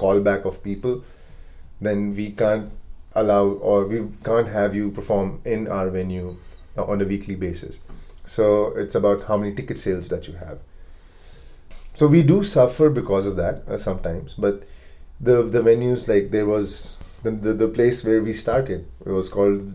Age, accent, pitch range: 30-49, Indian, 85-105 Hz